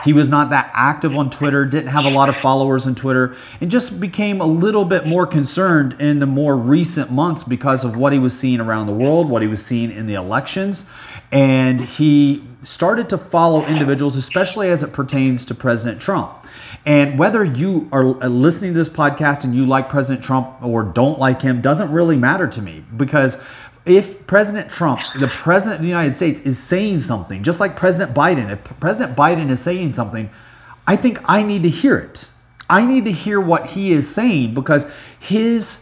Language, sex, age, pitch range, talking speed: English, male, 30-49, 130-180 Hz, 200 wpm